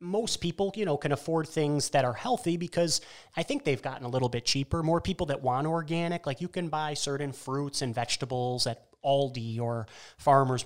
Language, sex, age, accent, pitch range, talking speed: English, male, 30-49, American, 120-150 Hz, 205 wpm